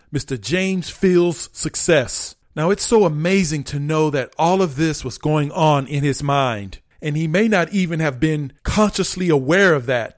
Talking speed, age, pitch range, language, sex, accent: 185 wpm, 40-59, 140-185 Hz, English, male, American